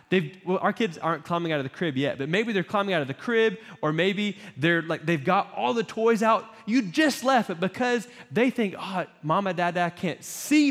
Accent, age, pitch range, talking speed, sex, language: American, 20-39, 150-220 Hz, 230 wpm, male, English